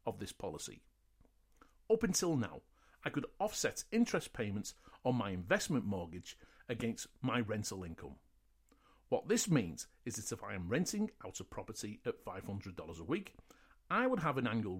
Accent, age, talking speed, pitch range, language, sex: British, 40-59, 160 wpm, 105-160 Hz, English, male